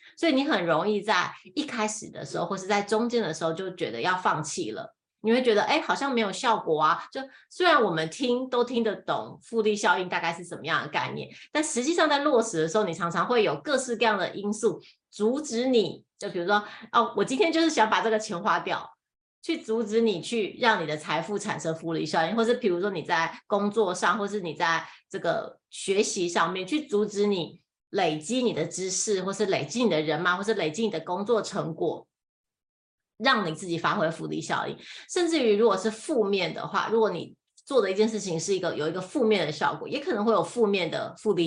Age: 30-49